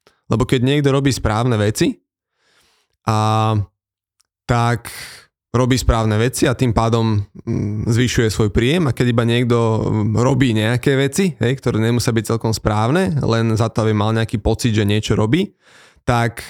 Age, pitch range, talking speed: 20-39, 110-130 Hz, 150 wpm